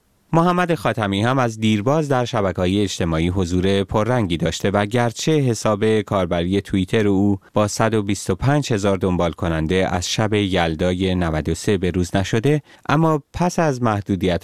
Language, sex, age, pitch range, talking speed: Persian, male, 30-49, 95-130 Hz, 135 wpm